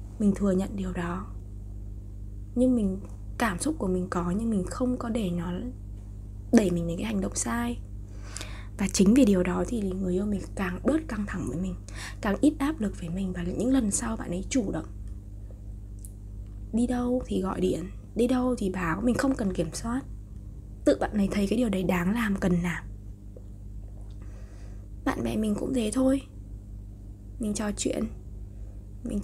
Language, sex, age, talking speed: Vietnamese, female, 20-39, 185 wpm